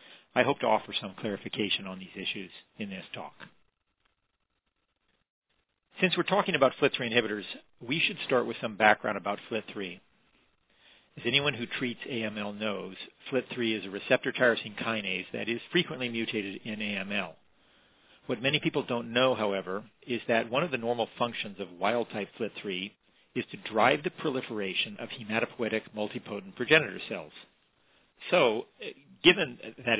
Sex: male